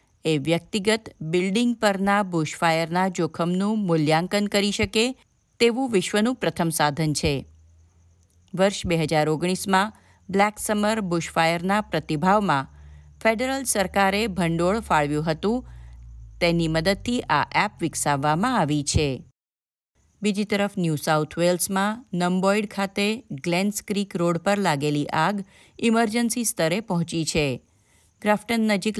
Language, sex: Gujarati, female